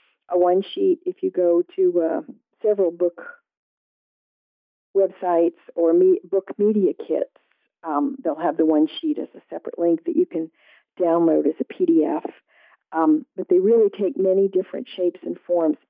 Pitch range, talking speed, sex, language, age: 170-250 Hz, 160 wpm, female, English, 50-69